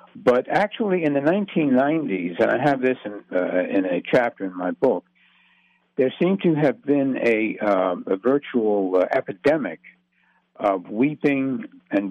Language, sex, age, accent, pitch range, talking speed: English, male, 60-79, American, 110-155 Hz, 155 wpm